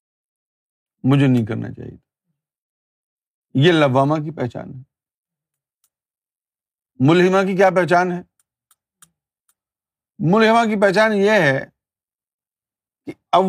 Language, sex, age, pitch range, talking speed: Urdu, male, 50-69, 125-170 Hz, 90 wpm